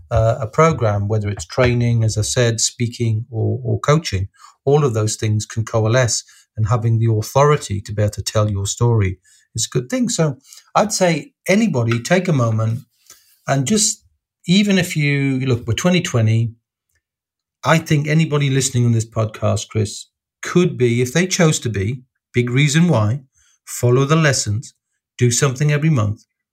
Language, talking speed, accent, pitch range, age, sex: English, 165 wpm, British, 110-140 Hz, 50-69, male